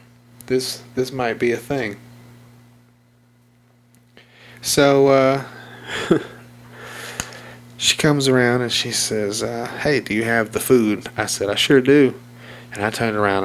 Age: 30-49